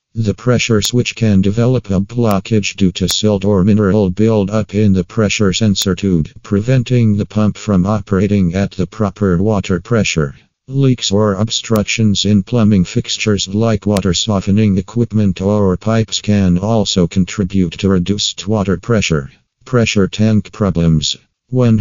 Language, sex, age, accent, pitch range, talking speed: English, male, 50-69, American, 95-110 Hz, 140 wpm